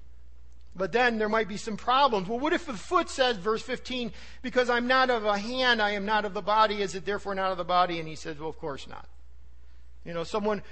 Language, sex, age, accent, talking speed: English, male, 50-69, American, 245 wpm